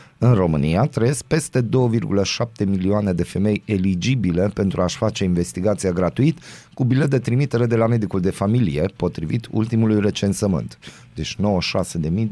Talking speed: 135 wpm